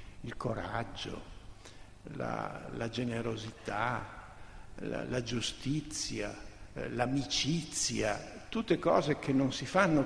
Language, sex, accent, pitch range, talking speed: Italian, male, native, 110-165 Hz, 90 wpm